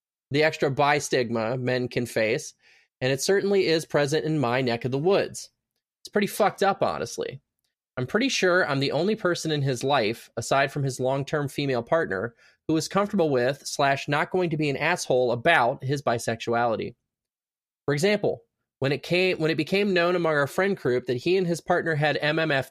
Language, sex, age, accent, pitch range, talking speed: English, male, 20-39, American, 130-180 Hz, 185 wpm